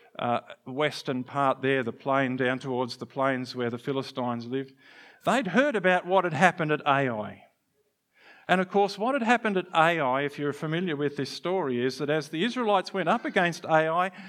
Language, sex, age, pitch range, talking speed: English, male, 50-69, 140-185 Hz, 190 wpm